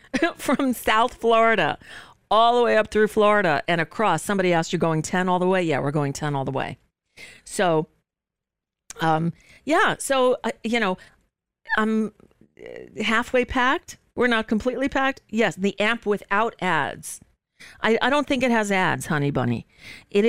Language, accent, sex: English, American, female